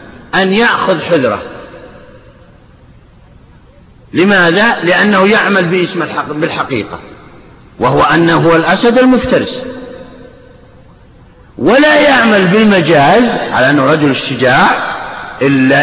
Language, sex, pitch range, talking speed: Arabic, male, 170-255 Hz, 85 wpm